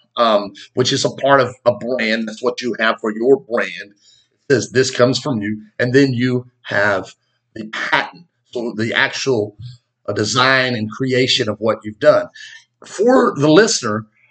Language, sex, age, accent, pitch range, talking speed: English, male, 50-69, American, 120-170 Hz, 170 wpm